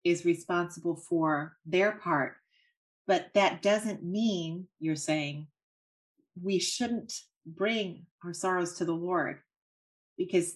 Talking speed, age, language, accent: 115 wpm, 30-49, English, American